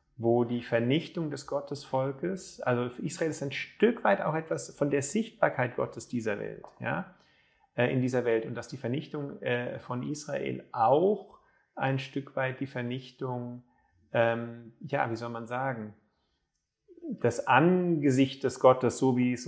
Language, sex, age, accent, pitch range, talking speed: German, male, 30-49, German, 120-150 Hz, 150 wpm